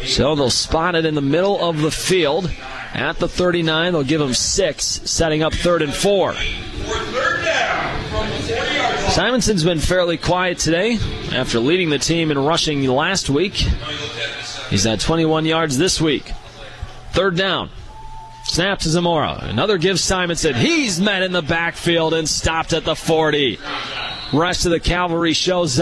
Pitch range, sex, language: 135-170 Hz, male, English